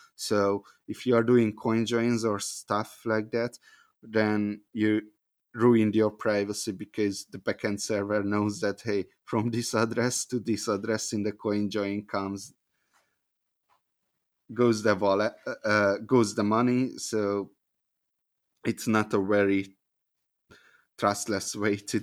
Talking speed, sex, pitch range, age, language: 135 wpm, male, 100-115 Hz, 30-49, English